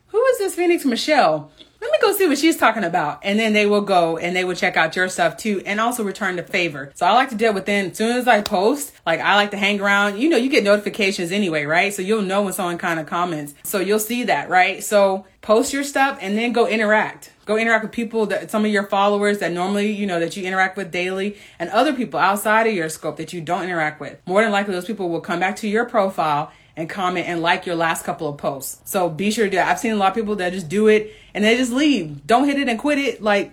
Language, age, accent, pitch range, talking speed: English, 30-49, American, 175-235 Hz, 275 wpm